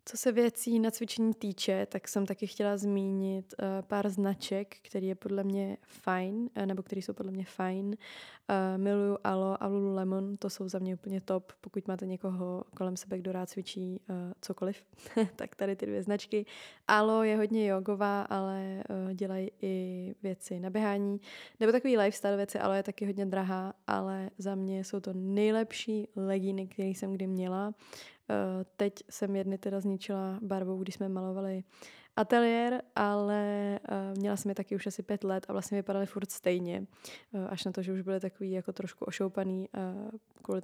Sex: female